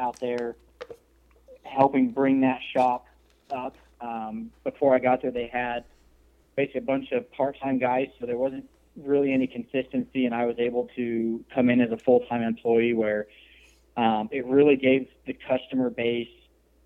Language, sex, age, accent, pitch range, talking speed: English, male, 20-39, American, 115-130 Hz, 160 wpm